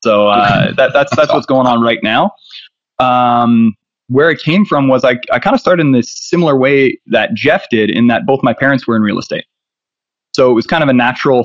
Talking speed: 230 wpm